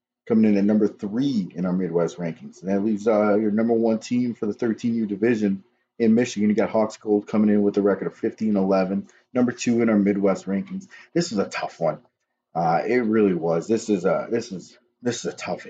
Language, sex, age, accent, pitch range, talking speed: English, male, 30-49, American, 95-115 Hz, 220 wpm